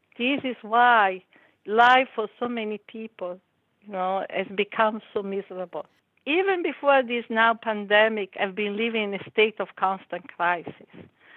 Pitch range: 200-250 Hz